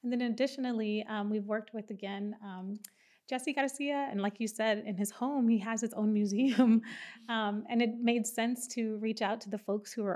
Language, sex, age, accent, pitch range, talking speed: English, female, 30-49, American, 205-235 Hz, 215 wpm